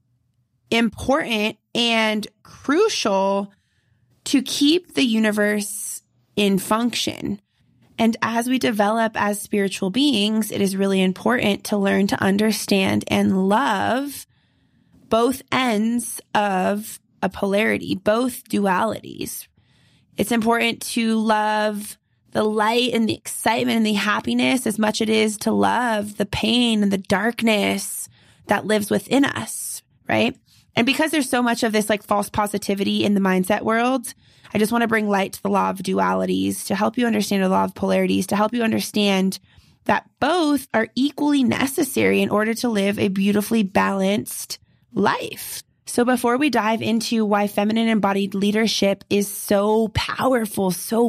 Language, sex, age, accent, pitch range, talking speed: English, female, 20-39, American, 200-230 Hz, 145 wpm